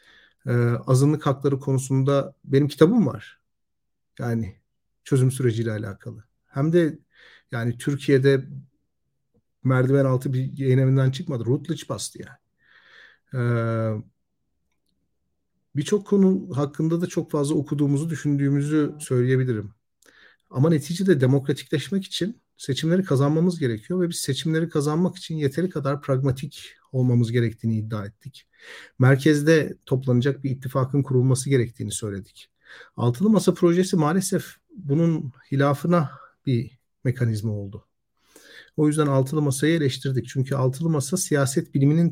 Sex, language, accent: male, Turkish, native